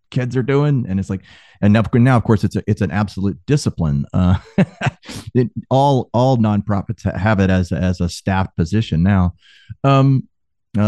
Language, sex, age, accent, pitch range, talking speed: English, male, 40-59, American, 95-125 Hz, 175 wpm